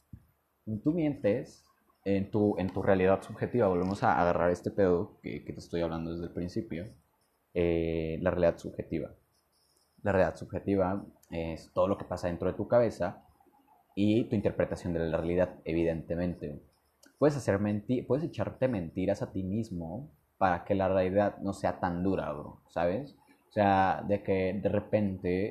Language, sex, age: Spanish, male, 20-39